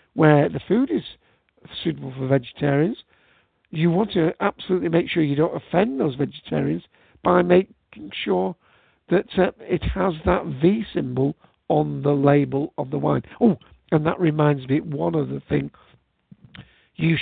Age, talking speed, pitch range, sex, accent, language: 60-79, 150 wpm, 130-160 Hz, male, British, English